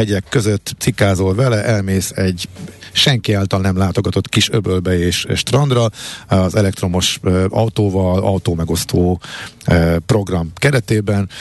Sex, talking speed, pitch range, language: male, 110 wpm, 95-115 Hz, Hungarian